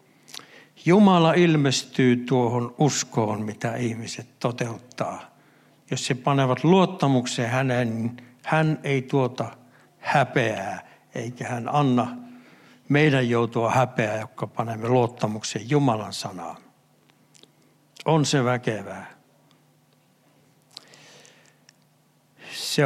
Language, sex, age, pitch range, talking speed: Finnish, male, 60-79, 125-160 Hz, 85 wpm